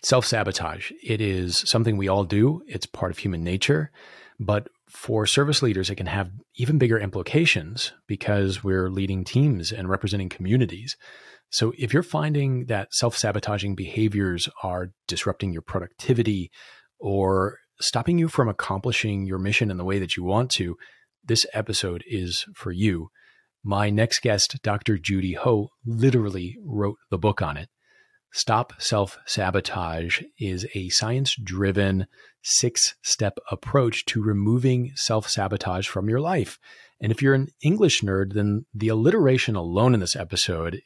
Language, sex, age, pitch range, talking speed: English, male, 30-49, 95-120 Hz, 140 wpm